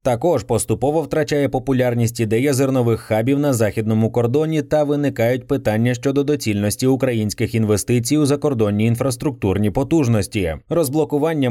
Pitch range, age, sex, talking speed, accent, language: 110-145 Hz, 20-39, male, 115 wpm, native, Ukrainian